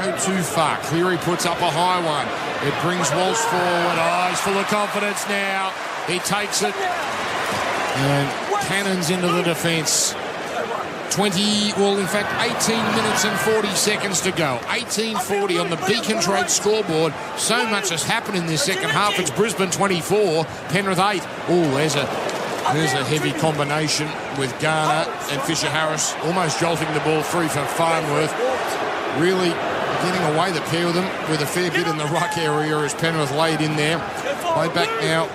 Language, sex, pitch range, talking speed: English, male, 155-185 Hz, 165 wpm